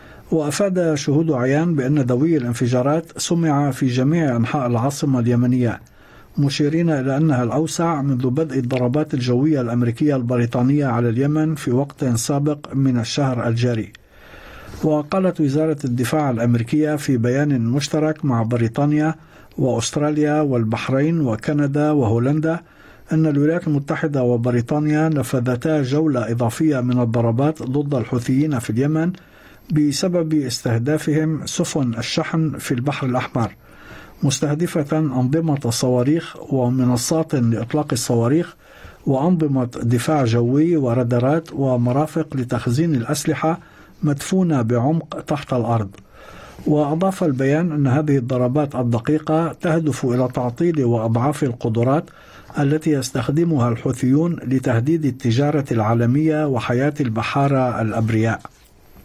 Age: 50-69